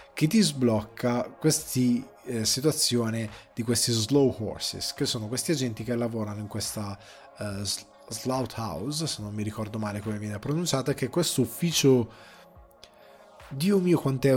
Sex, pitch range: male, 110-135 Hz